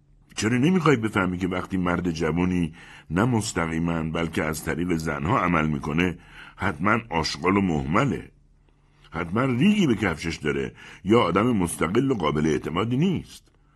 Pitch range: 80-125 Hz